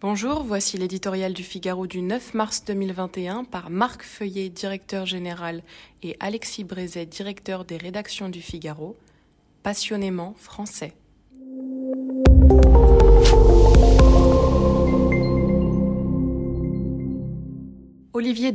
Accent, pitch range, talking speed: French, 175-215 Hz, 80 wpm